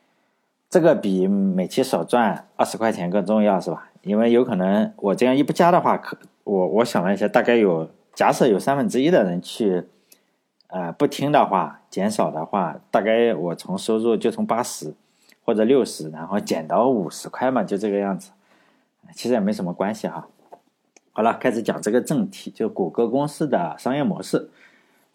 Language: Chinese